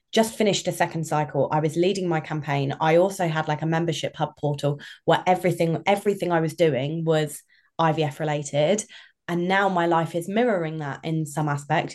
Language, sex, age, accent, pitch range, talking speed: English, female, 20-39, British, 150-175 Hz, 185 wpm